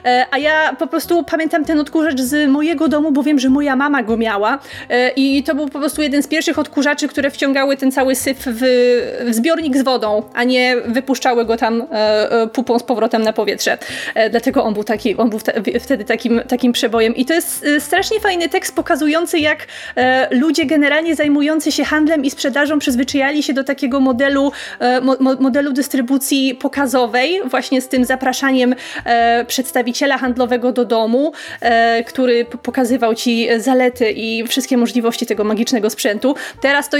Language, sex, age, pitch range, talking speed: Polish, female, 30-49, 240-285 Hz, 165 wpm